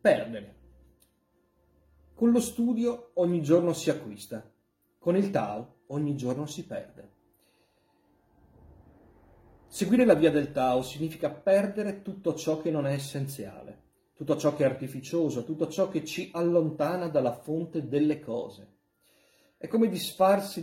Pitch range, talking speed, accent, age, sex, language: 125-160 Hz, 130 wpm, native, 40-59, male, Italian